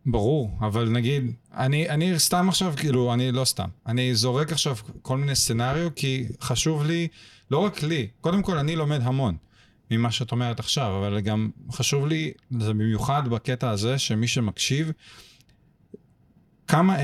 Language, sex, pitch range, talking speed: English, male, 110-135 Hz, 150 wpm